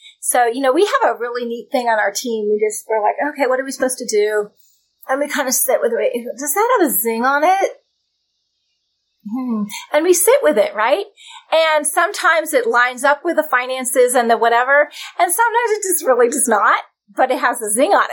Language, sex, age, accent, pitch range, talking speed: English, female, 30-49, American, 230-305 Hz, 225 wpm